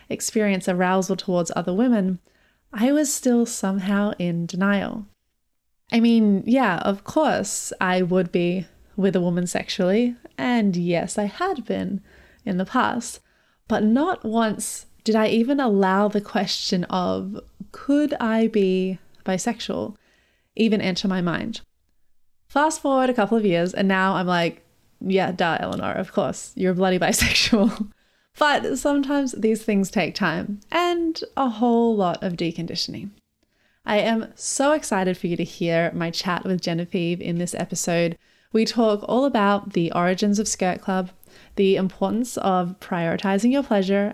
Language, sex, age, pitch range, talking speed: English, female, 20-39, 185-230 Hz, 150 wpm